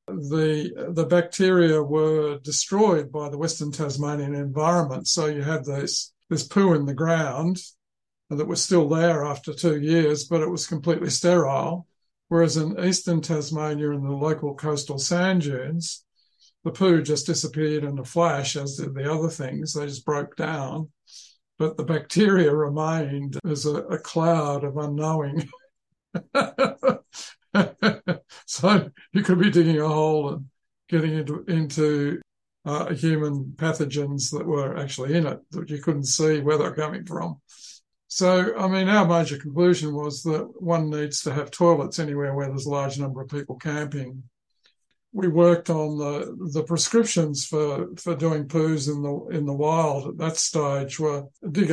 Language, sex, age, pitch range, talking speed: English, male, 60-79, 145-170 Hz, 160 wpm